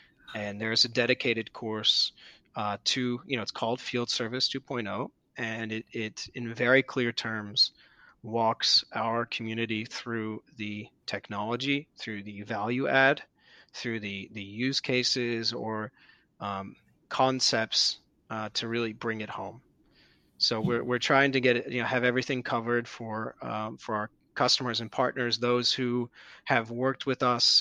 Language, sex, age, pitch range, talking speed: English, male, 30-49, 110-125 Hz, 150 wpm